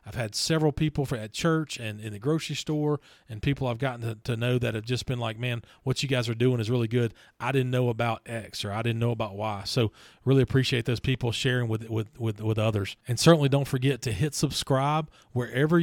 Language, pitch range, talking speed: English, 115-135 Hz, 240 wpm